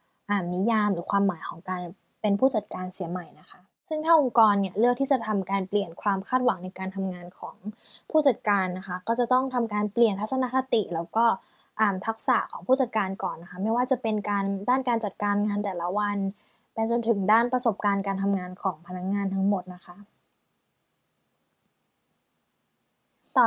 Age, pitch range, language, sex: 10-29, 190-235 Hz, Thai, female